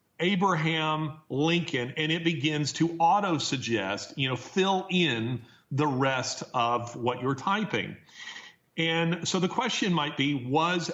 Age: 40-59